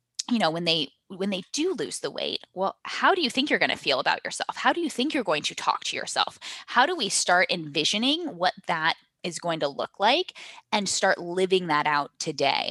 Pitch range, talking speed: 165-250 Hz, 230 wpm